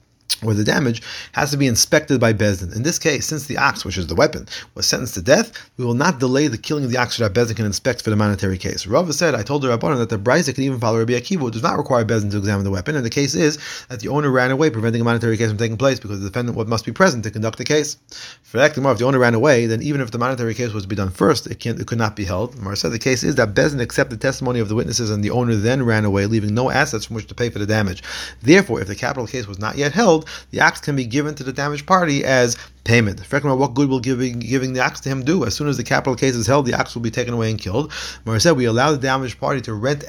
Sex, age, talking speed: male, 30-49, 300 wpm